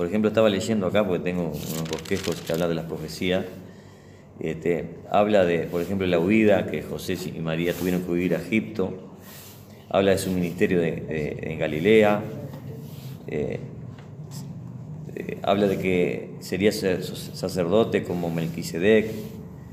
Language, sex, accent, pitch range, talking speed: Spanish, male, Argentinian, 90-110 Hz, 145 wpm